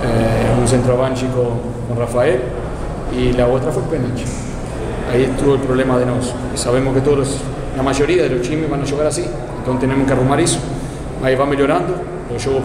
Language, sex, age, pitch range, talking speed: Portuguese, male, 30-49, 130-150 Hz, 185 wpm